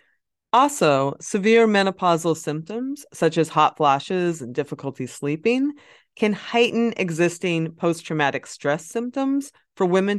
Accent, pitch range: American, 150-215 Hz